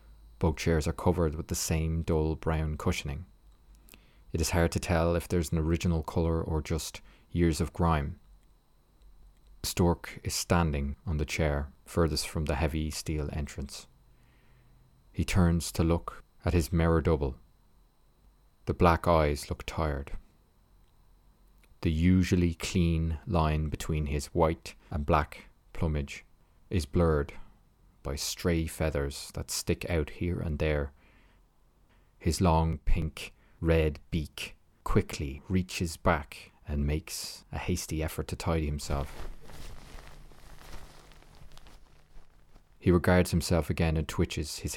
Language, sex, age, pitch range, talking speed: English, male, 30-49, 75-90 Hz, 125 wpm